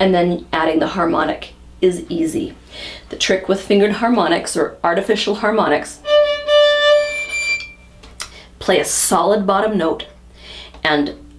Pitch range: 150-245 Hz